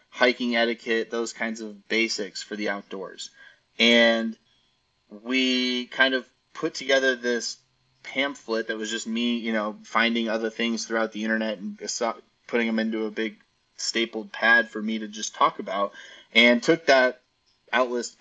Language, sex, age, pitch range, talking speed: English, male, 30-49, 110-130 Hz, 155 wpm